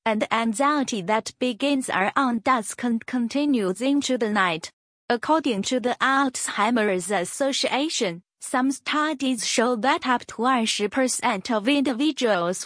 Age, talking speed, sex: 20-39, 130 wpm, female